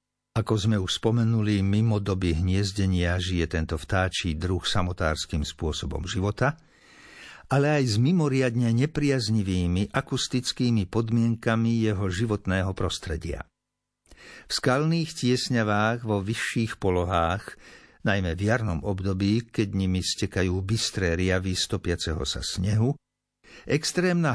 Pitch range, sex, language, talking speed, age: 95-125 Hz, male, Slovak, 105 wpm, 50-69